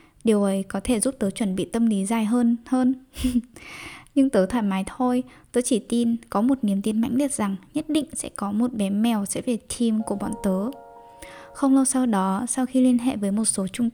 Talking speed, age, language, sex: 225 wpm, 10-29, Vietnamese, female